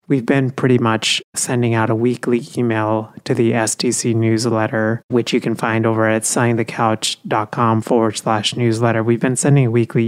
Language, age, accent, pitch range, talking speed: English, 30-49, American, 115-130 Hz, 165 wpm